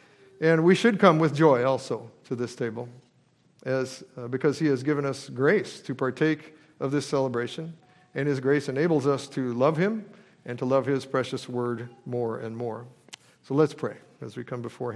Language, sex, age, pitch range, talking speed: English, male, 50-69, 130-160 Hz, 190 wpm